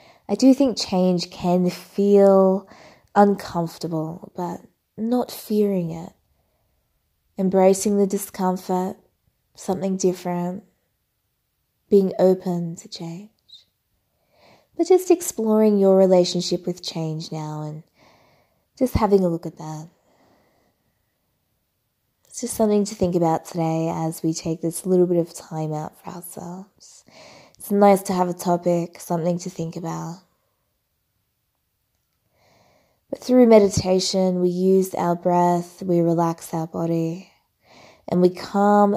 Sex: female